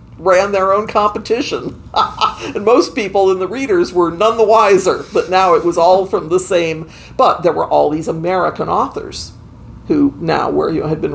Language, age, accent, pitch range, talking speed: English, 50-69, American, 160-205 Hz, 180 wpm